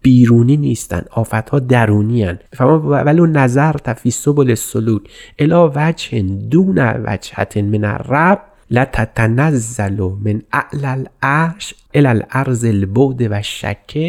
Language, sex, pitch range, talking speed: Persian, male, 115-150 Hz, 100 wpm